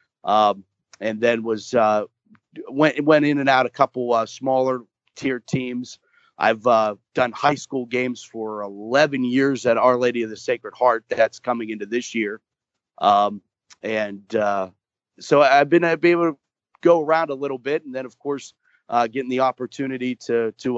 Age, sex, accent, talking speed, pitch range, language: 30-49, male, American, 180 wpm, 110-135 Hz, English